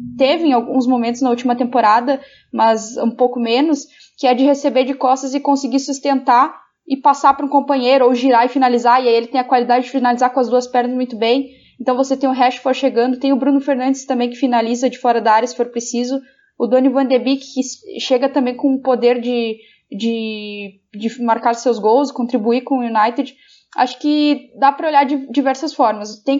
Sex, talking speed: female, 210 wpm